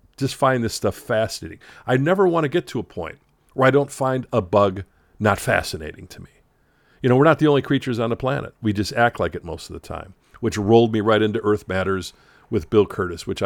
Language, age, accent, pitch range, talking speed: English, 50-69, American, 100-140 Hz, 235 wpm